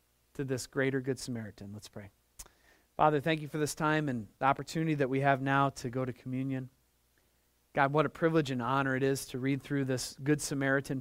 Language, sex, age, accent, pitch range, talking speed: English, male, 40-59, American, 100-155 Hz, 205 wpm